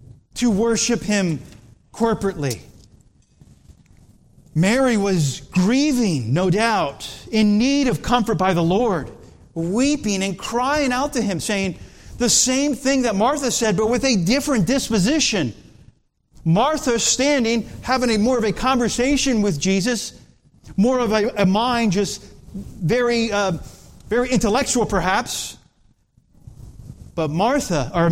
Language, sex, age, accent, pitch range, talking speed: English, male, 40-59, American, 145-225 Hz, 120 wpm